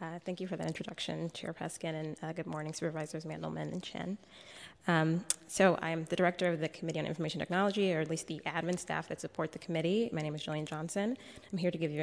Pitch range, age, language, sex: 165-190 Hz, 20-39, English, female